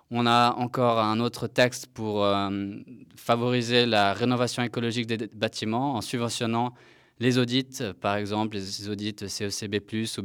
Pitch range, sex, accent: 100-120 Hz, male, French